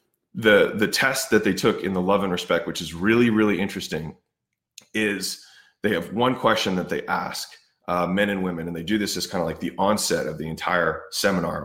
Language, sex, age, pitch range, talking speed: English, male, 20-39, 90-110 Hz, 215 wpm